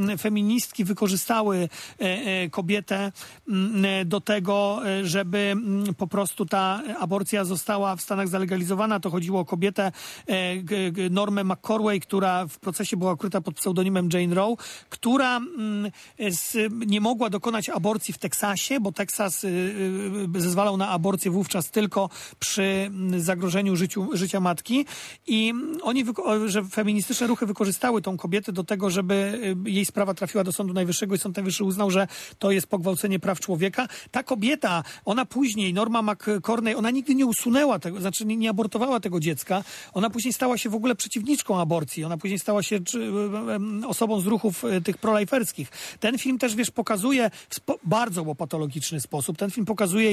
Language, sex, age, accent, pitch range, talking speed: Polish, male, 40-59, native, 190-220 Hz, 145 wpm